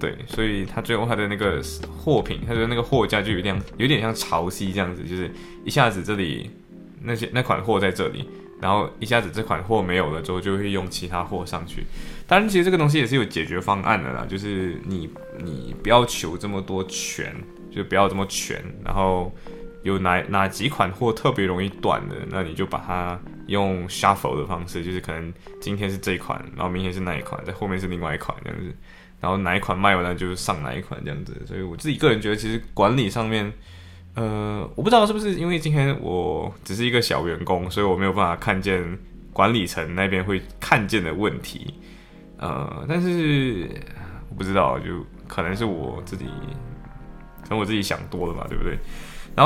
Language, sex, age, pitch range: Chinese, male, 20-39, 90-115 Hz